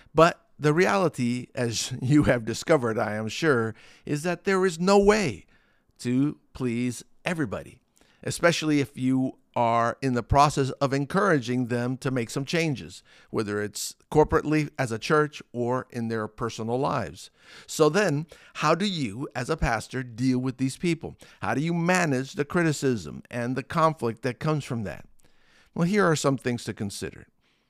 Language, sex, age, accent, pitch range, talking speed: English, male, 50-69, American, 115-150 Hz, 165 wpm